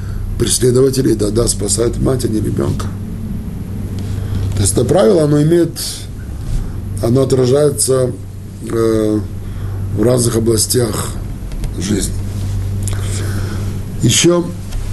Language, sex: Russian, male